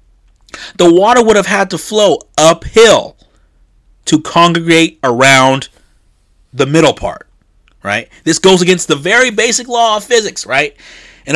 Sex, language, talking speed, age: male, English, 135 wpm, 30-49